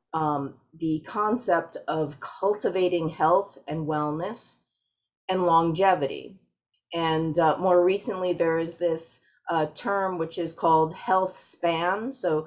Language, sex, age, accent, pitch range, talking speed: English, female, 30-49, American, 160-185 Hz, 120 wpm